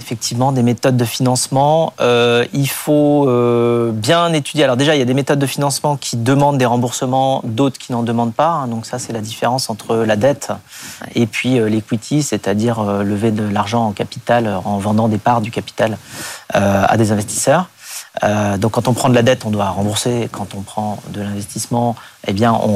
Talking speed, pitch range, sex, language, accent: 200 wpm, 110-135 Hz, male, French, French